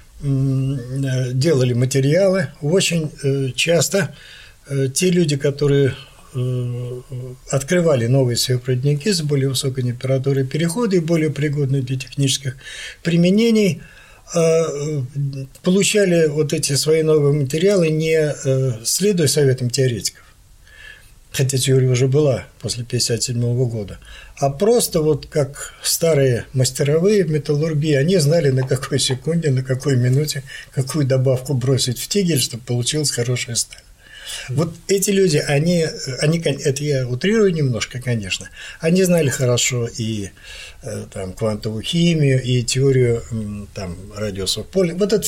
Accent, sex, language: native, male, Russian